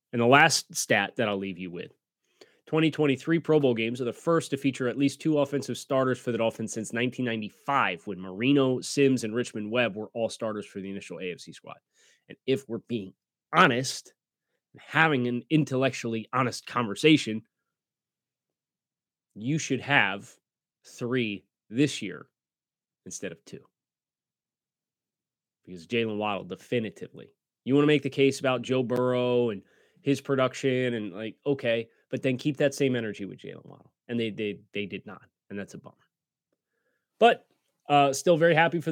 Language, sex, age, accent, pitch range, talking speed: English, male, 30-49, American, 115-150 Hz, 165 wpm